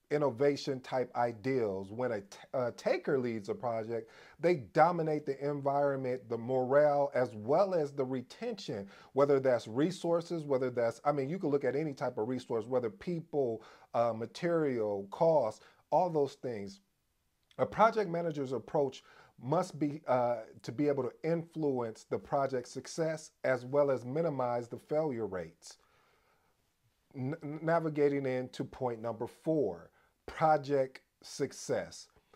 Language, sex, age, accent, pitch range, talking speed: English, male, 40-59, American, 115-150 Hz, 135 wpm